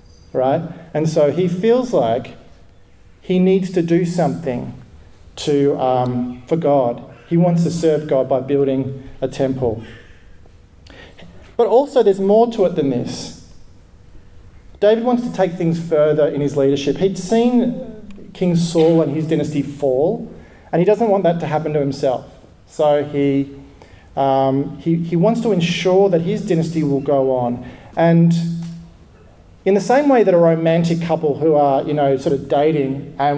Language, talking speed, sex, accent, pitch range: English, 160 wpm, male, Australian, 135-170 Hz